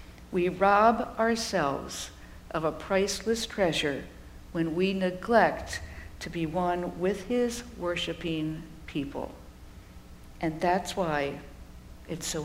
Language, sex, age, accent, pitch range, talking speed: English, female, 60-79, American, 145-190 Hz, 105 wpm